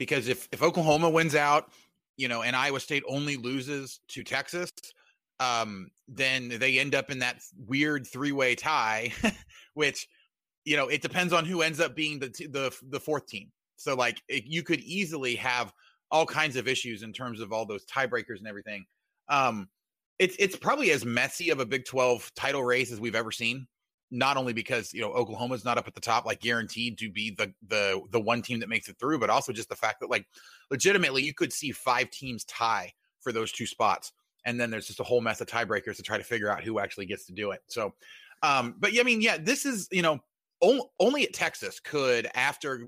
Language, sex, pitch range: English, male, 120-160 Hz